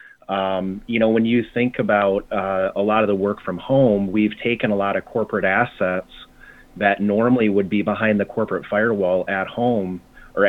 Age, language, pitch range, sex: 30-49, English, 95-110 Hz, male